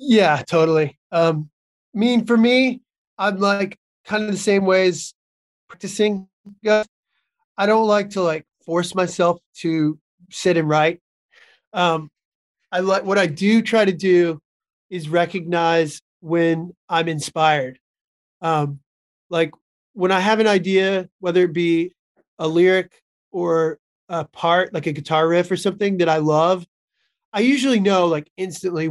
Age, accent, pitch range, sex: 30-49, American, 160-195 Hz, male